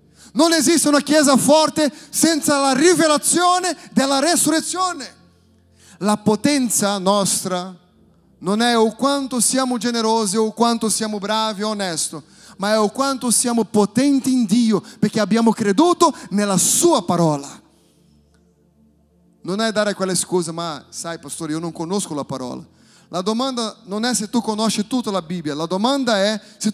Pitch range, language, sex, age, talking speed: 180-240 Hz, Italian, male, 30-49, 150 wpm